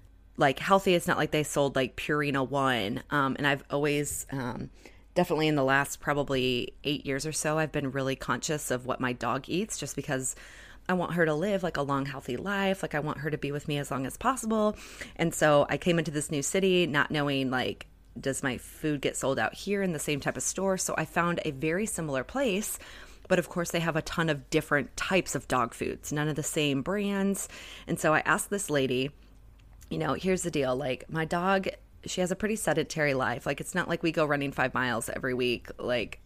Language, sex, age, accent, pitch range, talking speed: English, female, 20-39, American, 130-175 Hz, 225 wpm